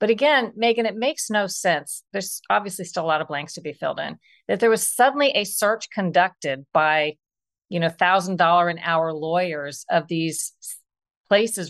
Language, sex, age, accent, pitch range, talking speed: English, female, 50-69, American, 165-210 Hz, 185 wpm